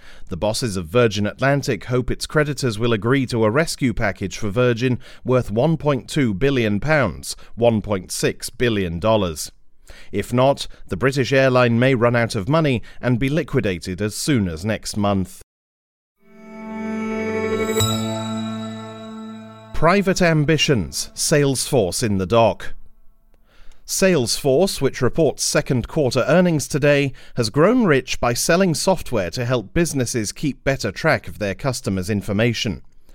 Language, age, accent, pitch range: English, 40-59, British, 105-140 Hz